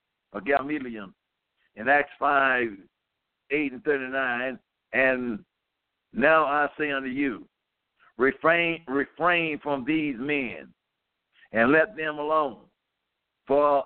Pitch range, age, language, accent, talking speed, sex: 135-185 Hz, 60-79, English, American, 105 wpm, male